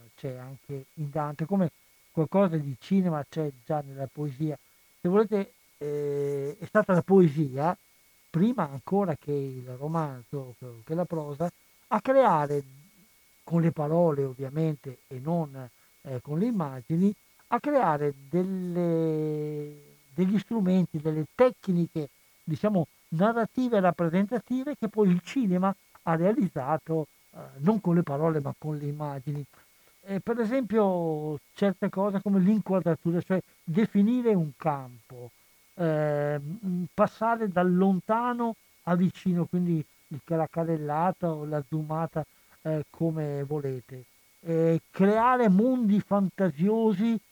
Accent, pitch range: native, 150-200 Hz